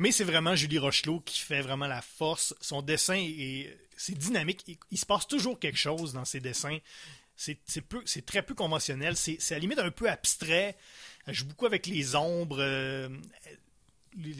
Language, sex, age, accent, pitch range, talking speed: French, male, 30-49, Canadian, 135-180 Hz, 200 wpm